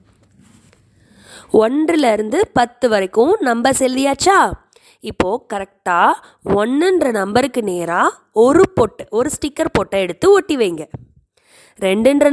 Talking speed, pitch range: 90 wpm, 195-300 Hz